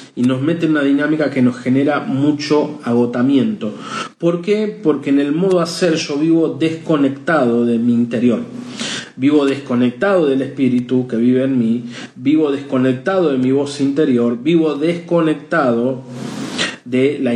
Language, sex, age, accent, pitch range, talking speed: Spanish, male, 40-59, Argentinian, 125-160 Hz, 145 wpm